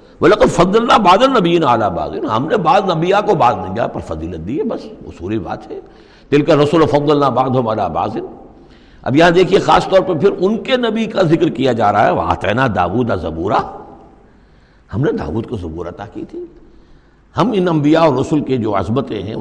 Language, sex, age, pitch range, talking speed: Urdu, male, 60-79, 110-180 Hz, 200 wpm